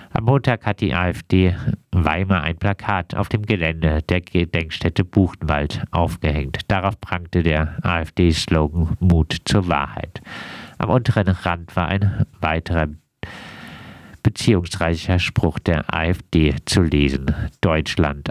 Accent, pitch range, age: German, 80-100 Hz, 50-69